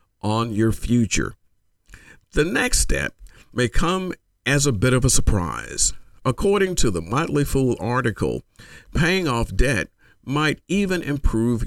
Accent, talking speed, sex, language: American, 135 wpm, male, English